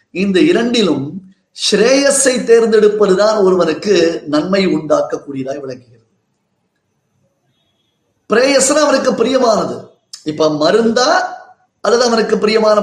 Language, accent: Tamil, native